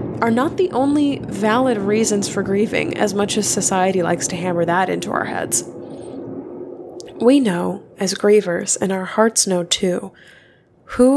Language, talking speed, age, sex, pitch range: English, 155 wpm, 20-39, female, 190-250 Hz